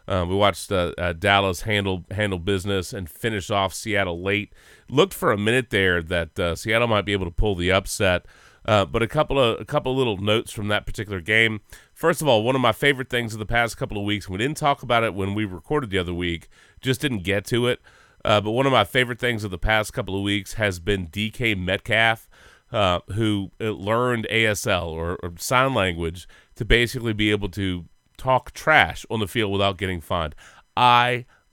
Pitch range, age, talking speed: 95-115 Hz, 30-49, 215 wpm